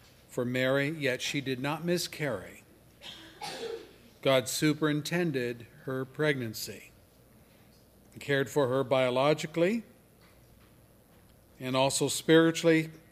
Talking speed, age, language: 85 wpm, 50-69, English